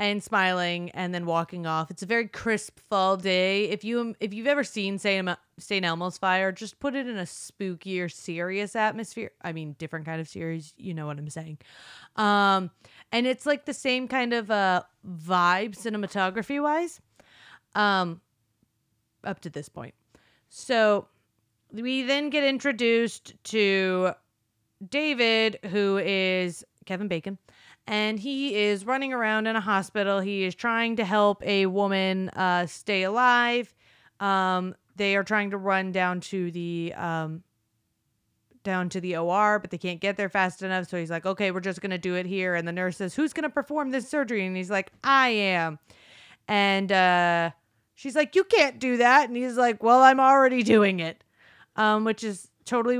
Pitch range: 175-225 Hz